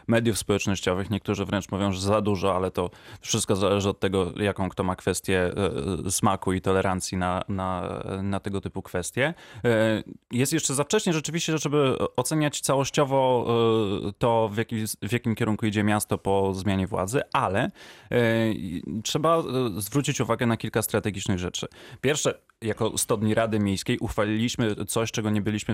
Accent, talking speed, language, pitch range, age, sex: native, 145 wpm, Polish, 100-115 Hz, 20-39, male